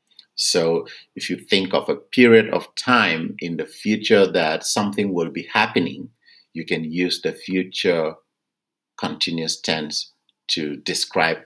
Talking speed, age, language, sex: 135 wpm, 50-69, English, male